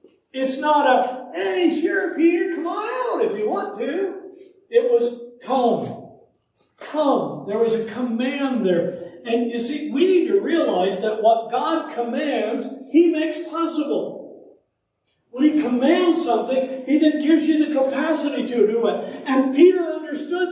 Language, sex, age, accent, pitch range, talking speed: English, male, 50-69, American, 225-330 Hz, 150 wpm